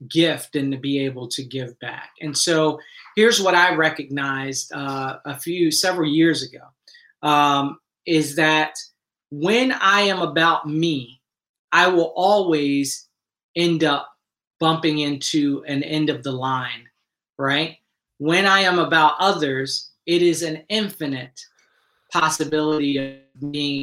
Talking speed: 135 wpm